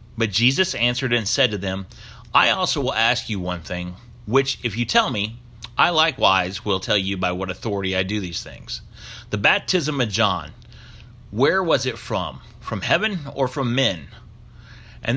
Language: English